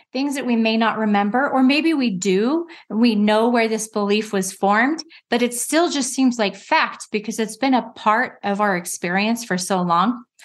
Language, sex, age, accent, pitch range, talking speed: English, female, 30-49, American, 205-260 Hz, 200 wpm